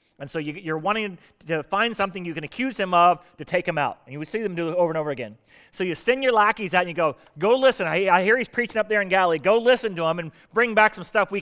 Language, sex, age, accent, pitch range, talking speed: English, male, 30-49, American, 180-285 Hz, 305 wpm